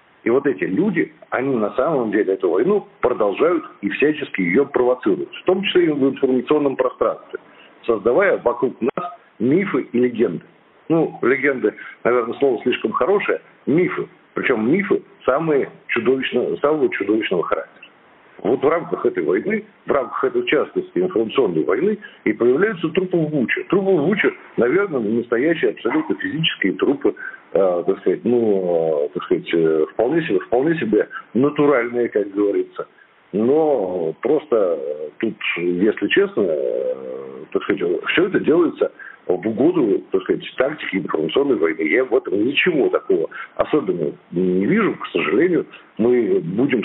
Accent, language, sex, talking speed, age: native, Russian, male, 140 wpm, 50-69